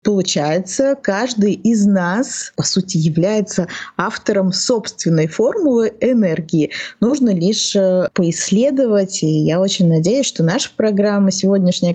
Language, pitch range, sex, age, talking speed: Russian, 175-210 Hz, female, 20-39, 110 wpm